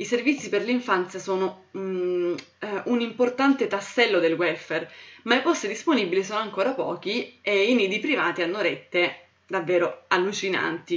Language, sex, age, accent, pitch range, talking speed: Italian, female, 20-39, native, 180-240 Hz, 140 wpm